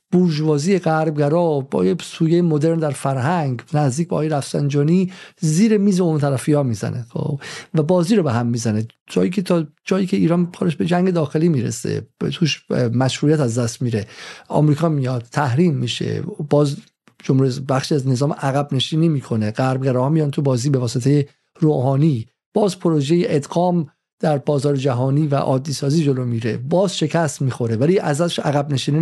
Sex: male